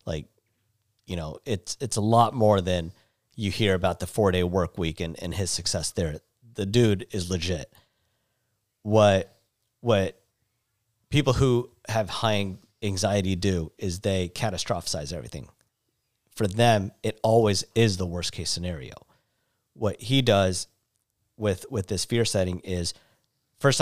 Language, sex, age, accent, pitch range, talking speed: English, male, 40-59, American, 95-120 Hz, 140 wpm